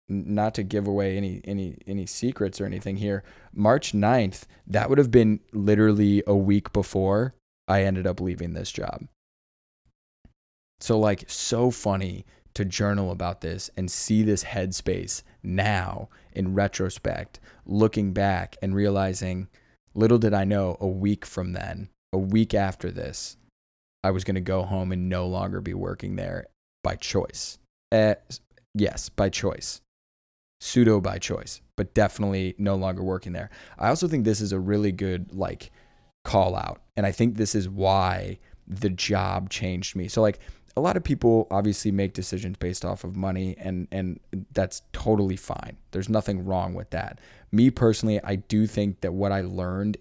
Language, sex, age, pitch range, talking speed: English, male, 20-39, 95-105 Hz, 165 wpm